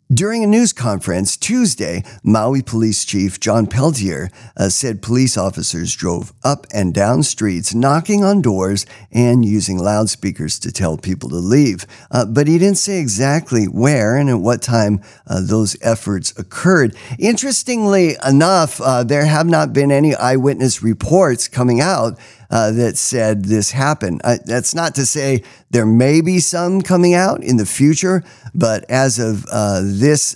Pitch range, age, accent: 105-140 Hz, 50-69, American